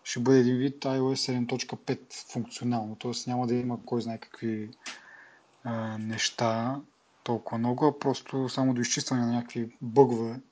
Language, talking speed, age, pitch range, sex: Bulgarian, 155 wpm, 20-39, 115-135 Hz, male